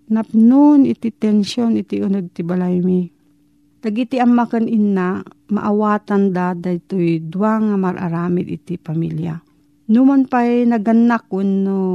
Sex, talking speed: female, 115 wpm